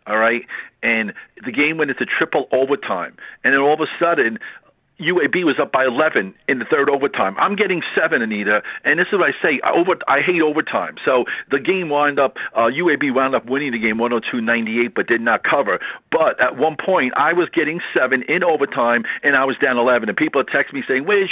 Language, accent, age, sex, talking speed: English, American, 50-69, male, 215 wpm